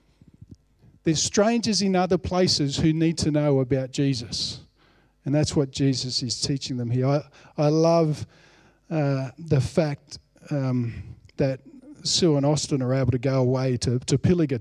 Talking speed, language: 155 wpm, English